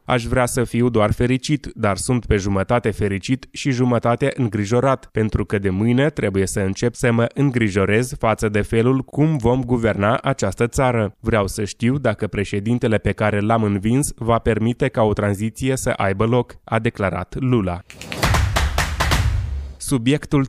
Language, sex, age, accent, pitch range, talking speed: Romanian, male, 20-39, native, 105-125 Hz, 155 wpm